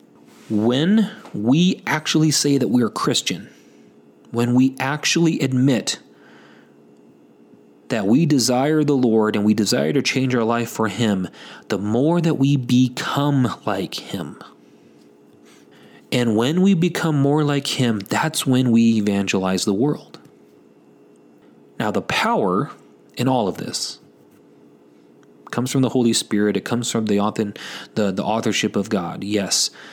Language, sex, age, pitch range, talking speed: English, male, 30-49, 95-145 Hz, 140 wpm